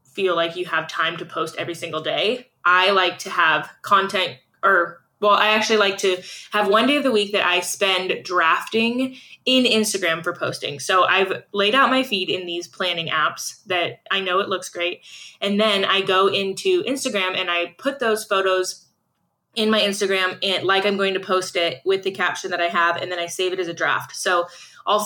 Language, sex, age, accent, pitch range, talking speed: English, female, 20-39, American, 175-210 Hz, 210 wpm